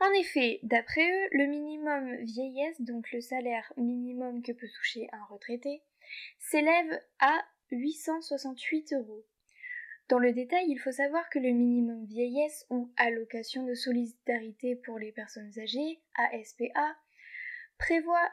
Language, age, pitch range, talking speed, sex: French, 10-29, 240-300 Hz, 130 wpm, female